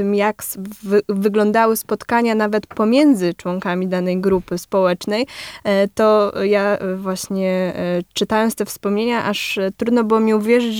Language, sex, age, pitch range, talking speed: Polish, female, 10-29, 185-220 Hz, 115 wpm